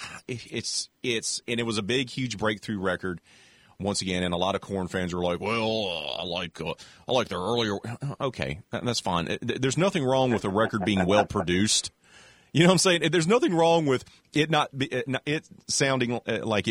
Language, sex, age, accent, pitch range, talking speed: English, male, 40-59, American, 95-130 Hz, 200 wpm